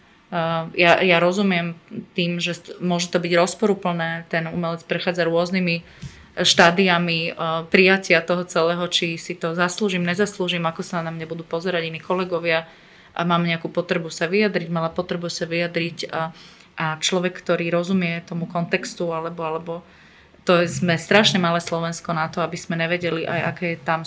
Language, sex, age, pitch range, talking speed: Slovak, female, 30-49, 165-185 Hz, 165 wpm